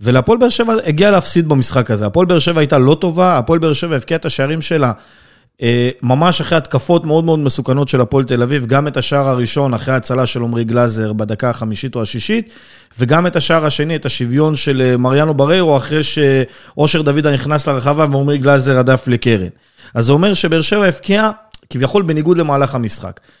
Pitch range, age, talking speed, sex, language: 130-165 Hz, 30-49, 180 wpm, male, Hebrew